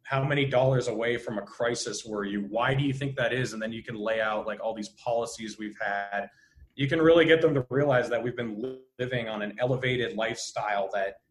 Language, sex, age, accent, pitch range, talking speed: English, male, 20-39, American, 105-130 Hz, 230 wpm